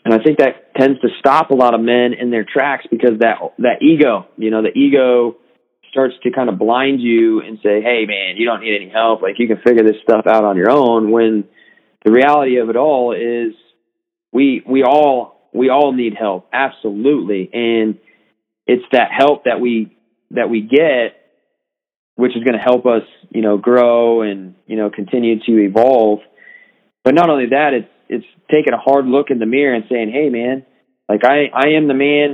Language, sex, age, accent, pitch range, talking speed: English, male, 30-49, American, 110-135 Hz, 200 wpm